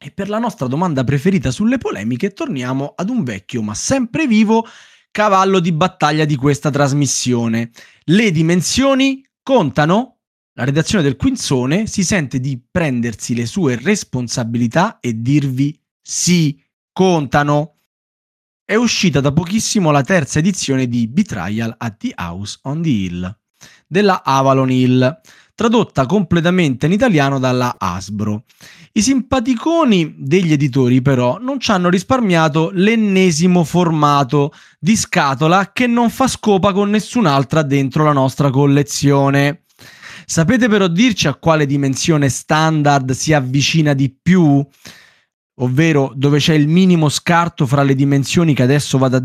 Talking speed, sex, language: 135 wpm, male, Italian